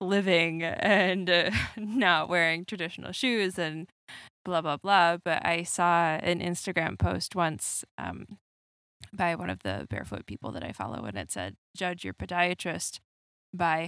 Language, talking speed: English, 150 wpm